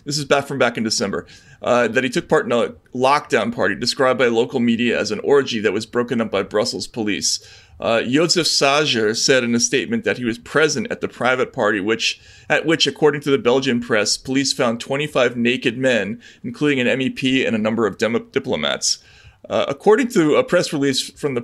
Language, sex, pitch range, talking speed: English, male, 120-150 Hz, 205 wpm